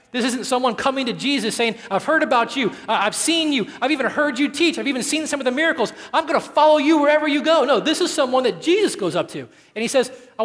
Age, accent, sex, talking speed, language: 40-59, American, male, 270 wpm, English